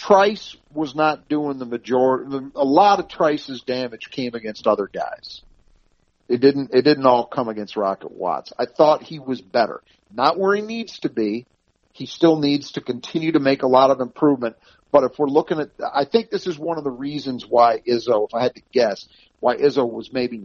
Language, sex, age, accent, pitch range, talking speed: English, male, 50-69, American, 115-155 Hz, 205 wpm